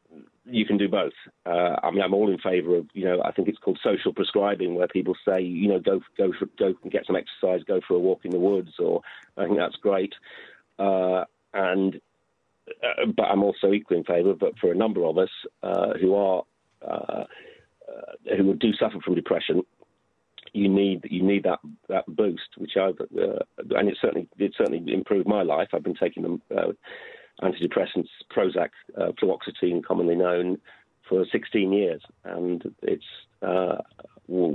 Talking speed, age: 180 wpm, 40-59